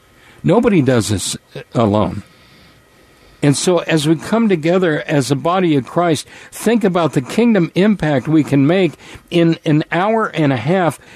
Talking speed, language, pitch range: 155 wpm, English, 125-165 Hz